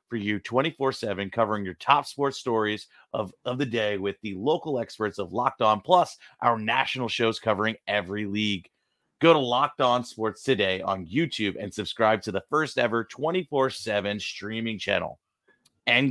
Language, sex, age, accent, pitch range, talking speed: English, male, 30-49, American, 105-130 Hz, 160 wpm